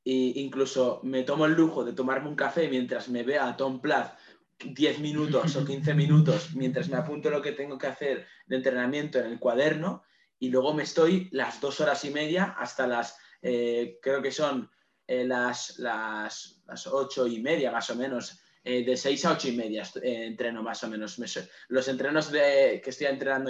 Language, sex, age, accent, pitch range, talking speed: Spanish, male, 20-39, Spanish, 130-150 Hz, 200 wpm